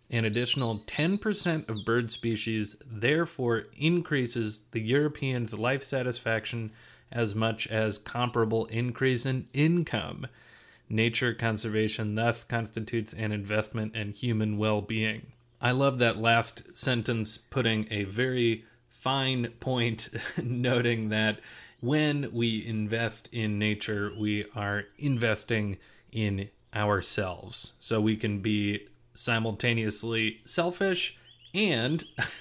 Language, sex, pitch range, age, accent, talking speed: English, male, 110-125 Hz, 30-49, American, 105 wpm